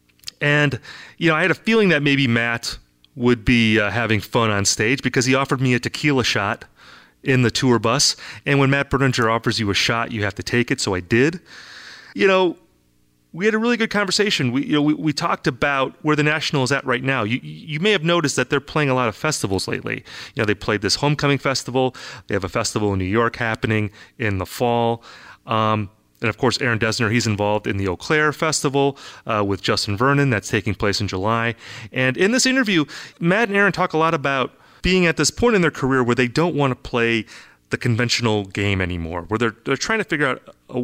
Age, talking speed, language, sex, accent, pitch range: 30-49, 230 wpm, English, male, American, 110-150 Hz